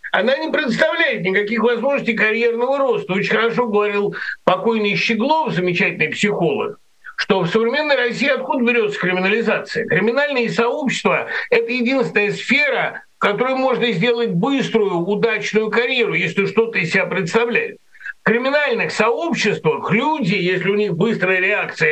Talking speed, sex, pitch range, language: 130 wpm, male, 185-240 Hz, Russian